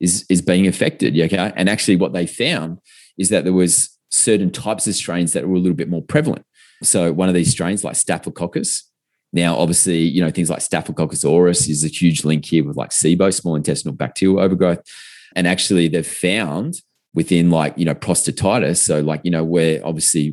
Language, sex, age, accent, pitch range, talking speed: English, male, 30-49, Australian, 80-90 Hz, 200 wpm